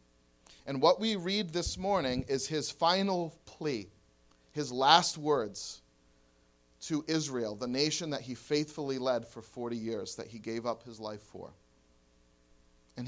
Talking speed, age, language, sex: 145 wpm, 40-59, English, male